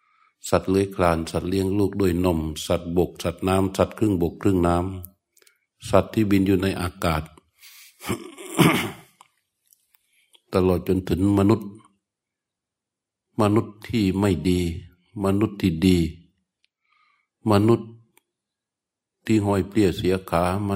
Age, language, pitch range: 60-79, Thai, 85-105 Hz